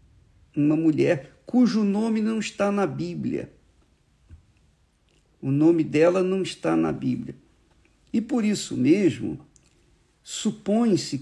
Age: 50-69